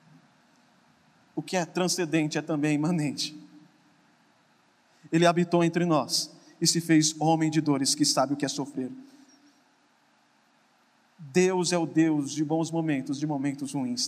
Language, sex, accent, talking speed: Portuguese, male, Brazilian, 140 wpm